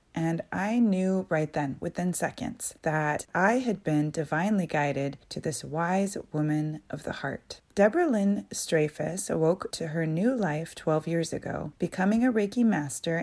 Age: 30-49